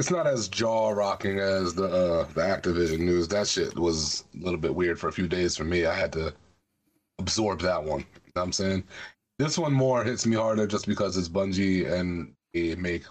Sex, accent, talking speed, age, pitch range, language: male, American, 220 wpm, 30-49, 90-115 Hz, English